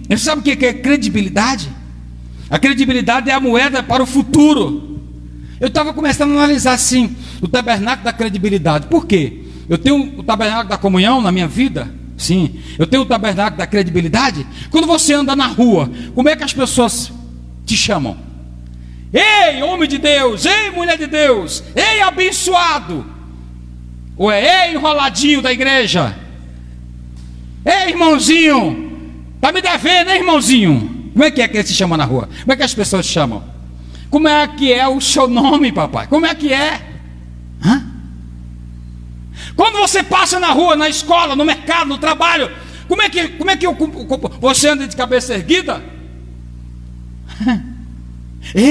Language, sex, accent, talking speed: Portuguese, male, Brazilian, 165 wpm